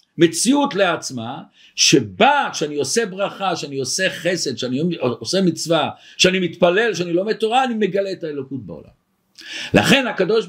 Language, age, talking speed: Hebrew, 60-79, 145 wpm